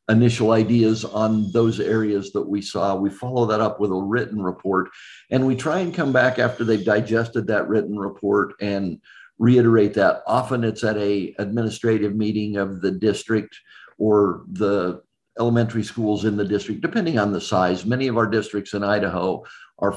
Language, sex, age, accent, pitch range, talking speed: English, male, 50-69, American, 105-120 Hz, 175 wpm